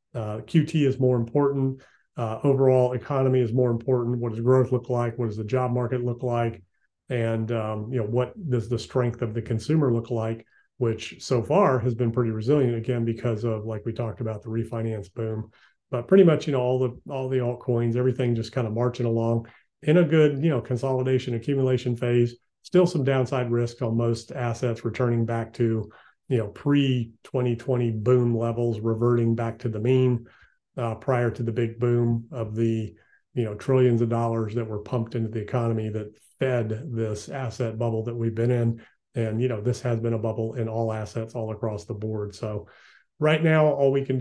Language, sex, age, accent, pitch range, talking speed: English, male, 30-49, American, 115-130 Hz, 200 wpm